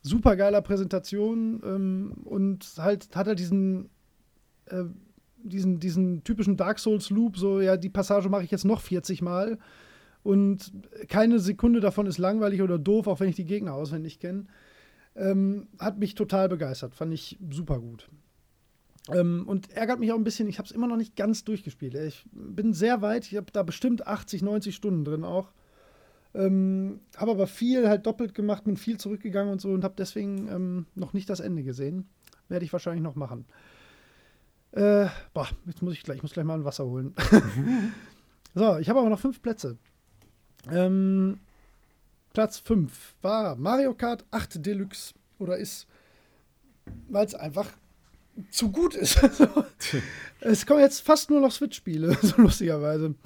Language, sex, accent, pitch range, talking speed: German, male, German, 180-220 Hz, 165 wpm